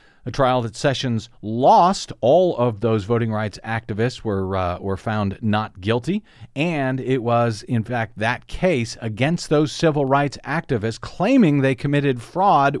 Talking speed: 155 wpm